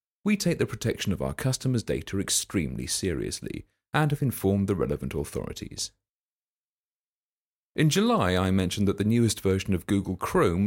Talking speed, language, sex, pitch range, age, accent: 150 wpm, English, male, 90-120 Hz, 40-59, British